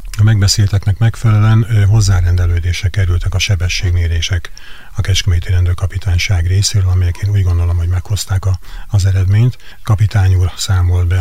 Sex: male